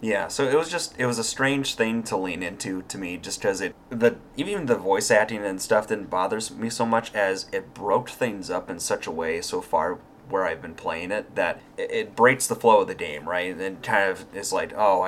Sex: male